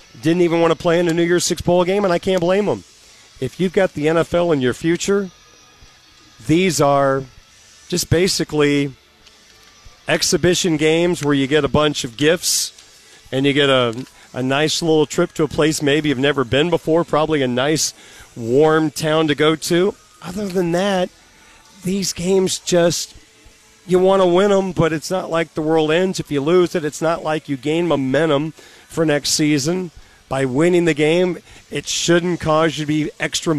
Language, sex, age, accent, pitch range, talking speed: English, male, 40-59, American, 140-170 Hz, 185 wpm